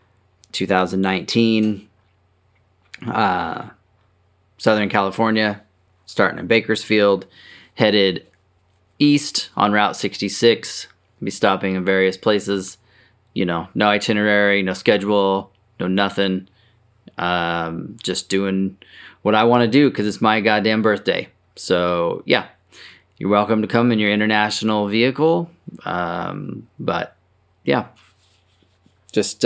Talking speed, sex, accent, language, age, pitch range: 105 wpm, male, American, English, 20-39, 95-110 Hz